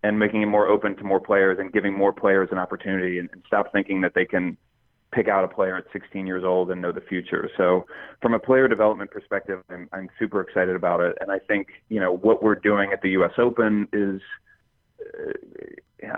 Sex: male